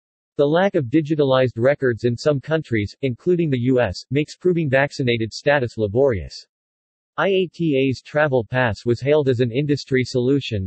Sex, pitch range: male, 120-150 Hz